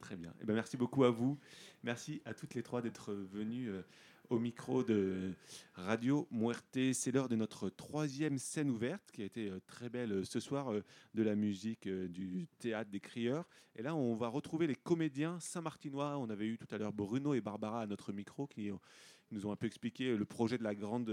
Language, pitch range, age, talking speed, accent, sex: French, 100-130 Hz, 30-49, 220 wpm, French, male